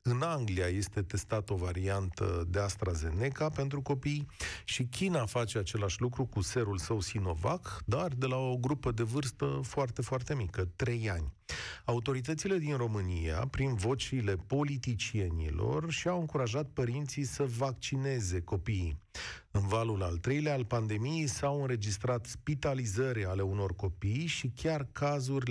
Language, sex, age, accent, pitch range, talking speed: Romanian, male, 40-59, native, 100-130 Hz, 135 wpm